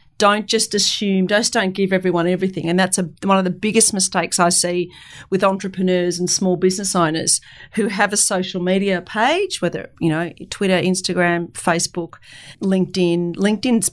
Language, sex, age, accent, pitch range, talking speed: English, female, 40-59, Australian, 180-225 Hz, 165 wpm